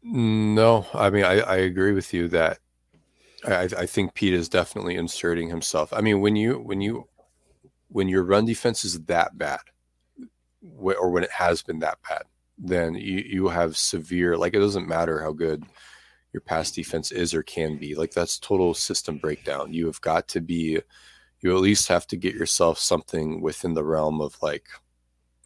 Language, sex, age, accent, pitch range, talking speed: English, male, 30-49, American, 80-100 Hz, 185 wpm